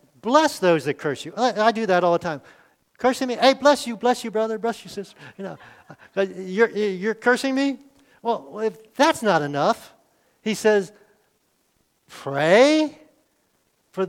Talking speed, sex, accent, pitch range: 155 wpm, male, American, 165-230 Hz